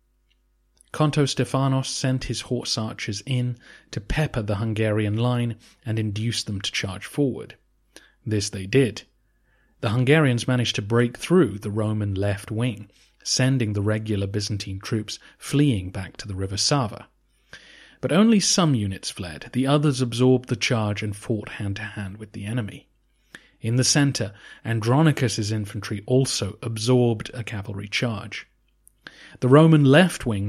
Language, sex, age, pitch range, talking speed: English, male, 30-49, 105-130 Hz, 140 wpm